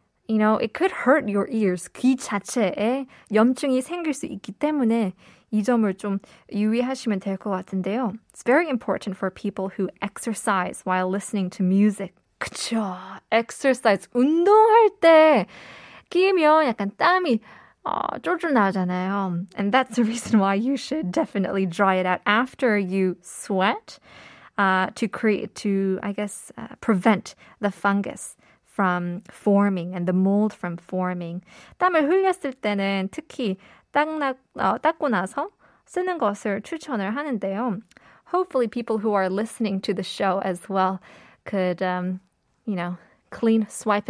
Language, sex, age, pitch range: Korean, female, 20-39, 195-260 Hz